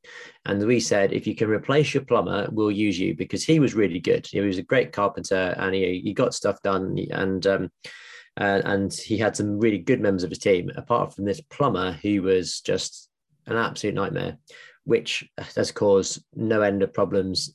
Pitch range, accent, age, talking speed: 95-115 Hz, British, 20-39, 200 wpm